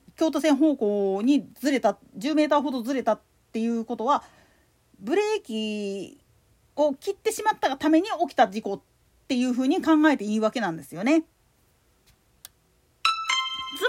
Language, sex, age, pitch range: Japanese, female, 40-59, 250-355 Hz